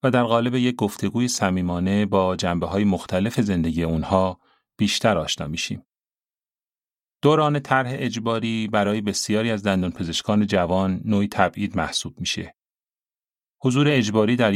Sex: male